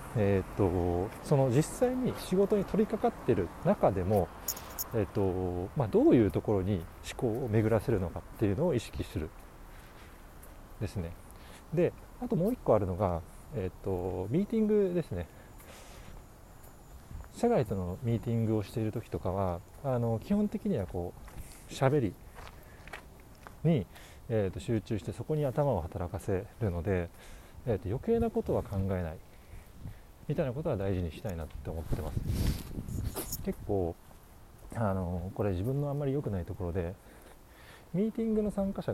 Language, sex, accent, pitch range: Japanese, male, native, 90-125 Hz